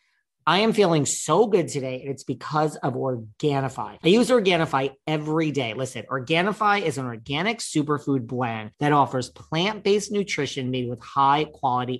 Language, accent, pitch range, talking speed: English, American, 130-170 Hz, 150 wpm